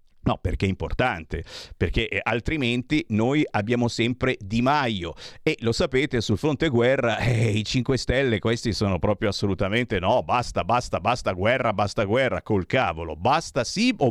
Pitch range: 100-130 Hz